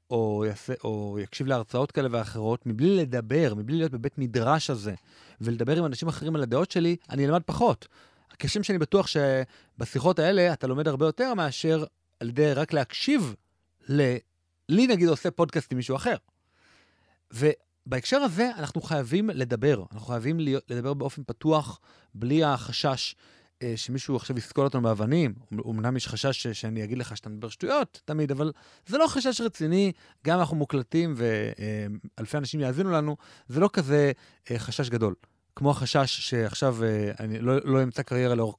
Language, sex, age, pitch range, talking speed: Hebrew, male, 30-49, 115-160 Hz, 155 wpm